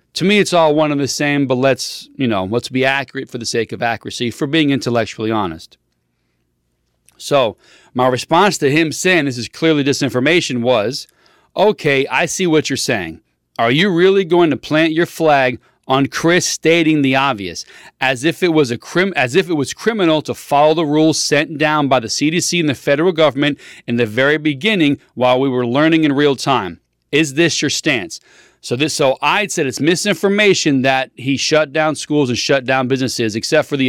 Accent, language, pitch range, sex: American, English, 125-160 Hz, male